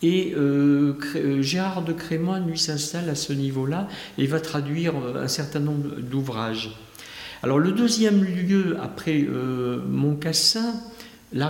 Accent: French